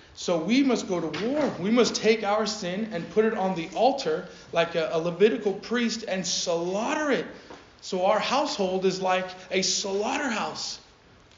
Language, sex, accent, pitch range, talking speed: English, male, American, 180-230 Hz, 165 wpm